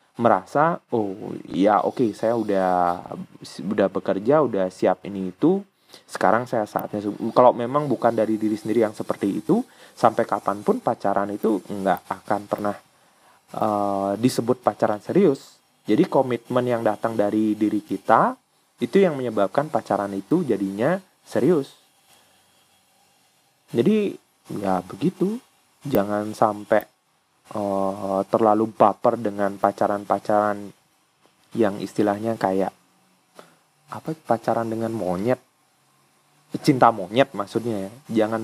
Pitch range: 100-120 Hz